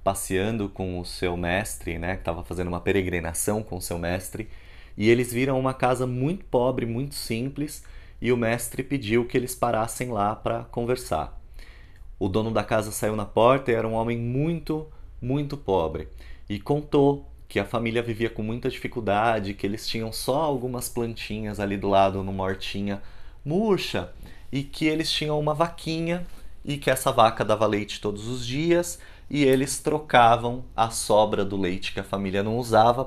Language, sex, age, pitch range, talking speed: Portuguese, male, 30-49, 95-130 Hz, 175 wpm